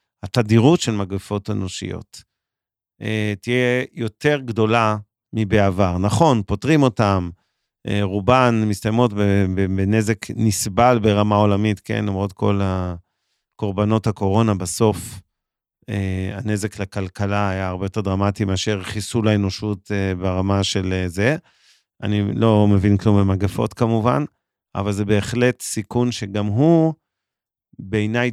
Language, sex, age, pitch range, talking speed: Hebrew, male, 40-59, 100-120 Hz, 100 wpm